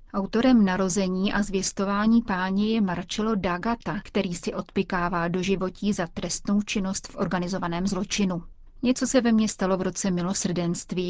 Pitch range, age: 185-215 Hz, 30-49